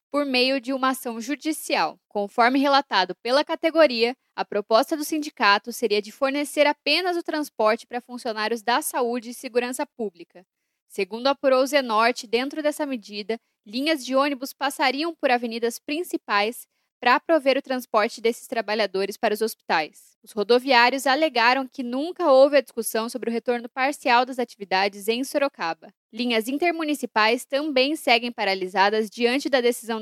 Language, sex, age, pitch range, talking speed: Portuguese, female, 10-29, 215-270 Hz, 145 wpm